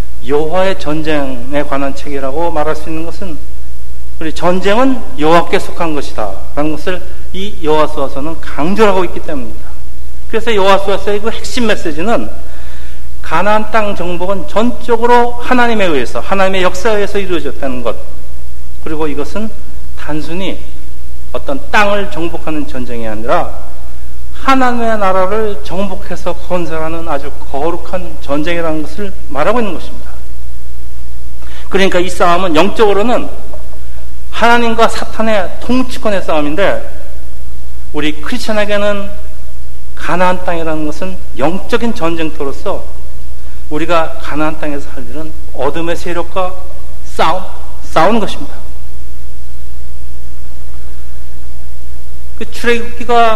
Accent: native